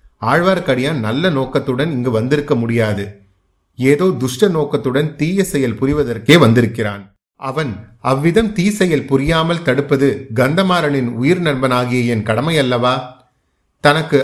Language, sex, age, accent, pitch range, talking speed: Tamil, male, 30-49, native, 115-145 Hz, 95 wpm